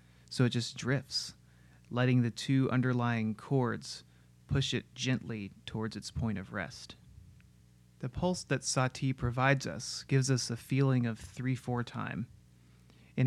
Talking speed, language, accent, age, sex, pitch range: 140 wpm, English, American, 30-49, male, 105-135 Hz